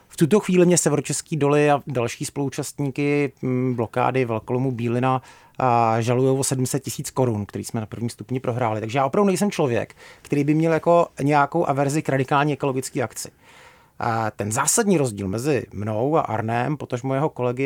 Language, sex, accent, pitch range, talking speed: Czech, male, native, 125-160 Hz, 170 wpm